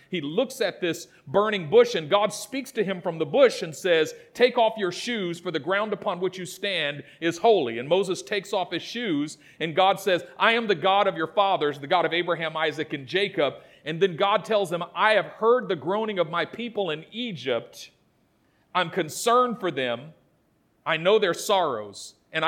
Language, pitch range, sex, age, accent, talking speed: English, 175-255 Hz, male, 40-59, American, 205 wpm